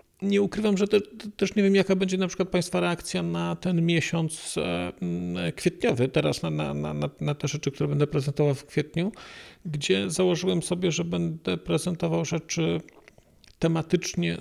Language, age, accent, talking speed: Polish, 40-59, native, 165 wpm